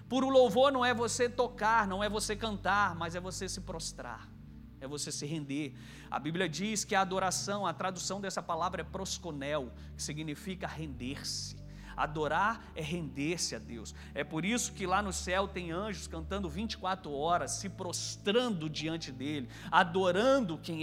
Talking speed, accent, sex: 165 wpm, Brazilian, male